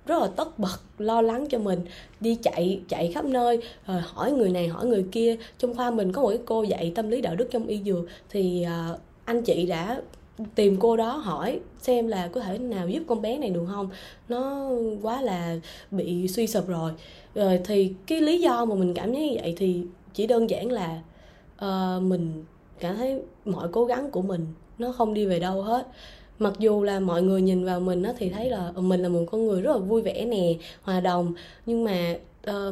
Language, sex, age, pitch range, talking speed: Vietnamese, female, 20-39, 180-235 Hz, 215 wpm